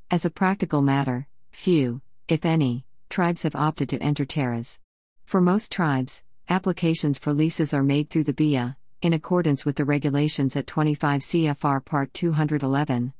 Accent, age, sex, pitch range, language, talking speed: American, 50-69, female, 135-160 Hz, English, 155 wpm